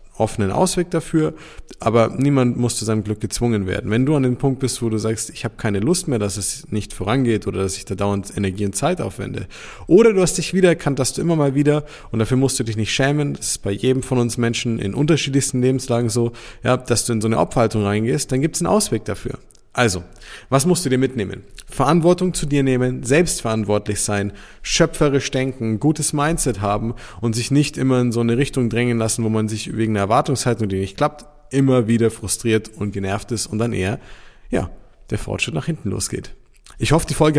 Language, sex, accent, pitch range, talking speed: German, male, German, 110-140 Hz, 215 wpm